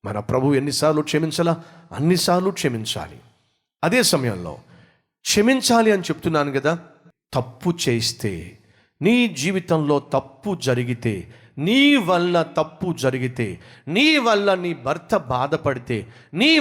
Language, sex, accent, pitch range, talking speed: Telugu, male, native, 120-175 Hz, 85 wpm